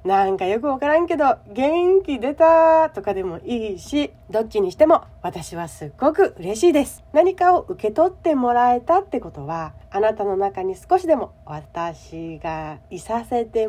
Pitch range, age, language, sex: 175-290 Hz, 40-59, Japanese, female